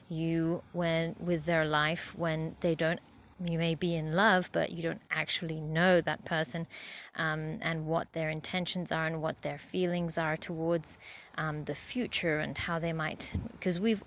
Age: 30-49